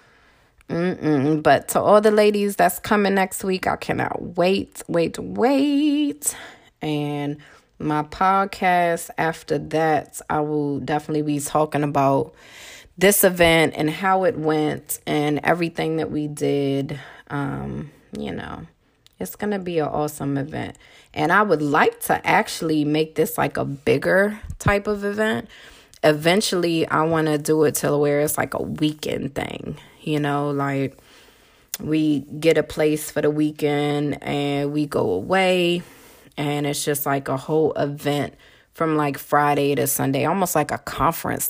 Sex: female